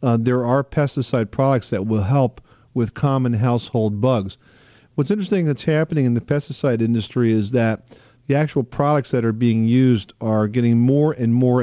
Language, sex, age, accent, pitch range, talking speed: English, male, 50-69, American, 115-135 Hz, 175 wpm